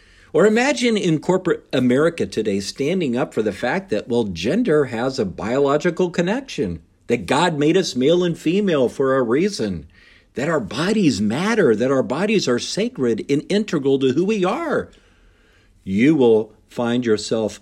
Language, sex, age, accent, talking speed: English, male, 50-69, American, 160 wpm